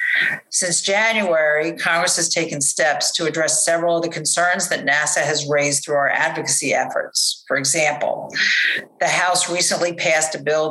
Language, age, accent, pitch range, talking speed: English, 50-69, American, 150-170 Hz, 155 wpm